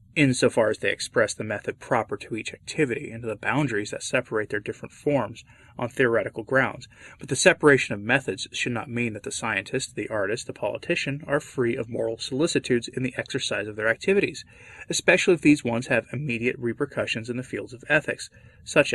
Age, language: 30-49, English